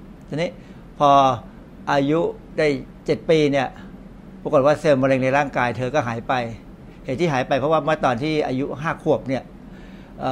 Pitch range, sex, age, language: 130-160 Hz, male, 60-79, Thai